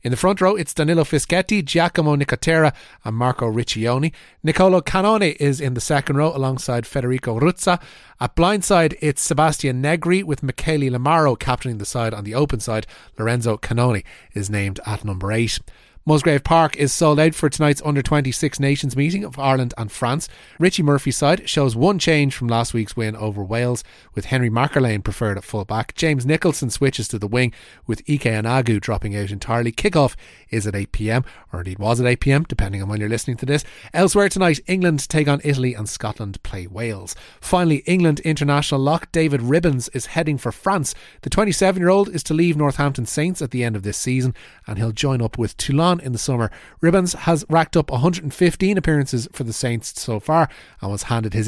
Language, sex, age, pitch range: English, male, 30-49, 115-160 Hz